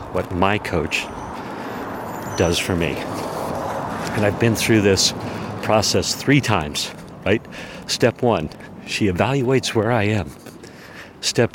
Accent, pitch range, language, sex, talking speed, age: American, 95-125 Hz, English, male, 120 wpm, 50-69